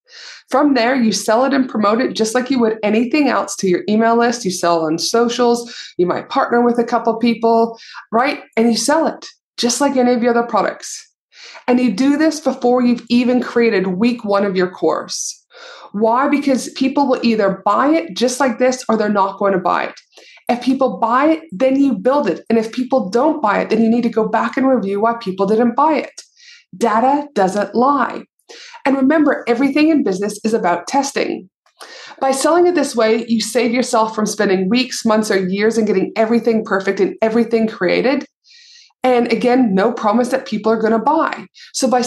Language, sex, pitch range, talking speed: English, female, 215-270 Hz, 205 wpm